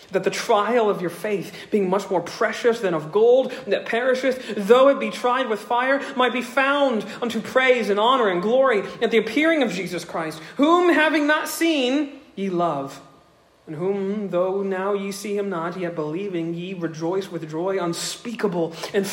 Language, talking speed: English, 180 wpm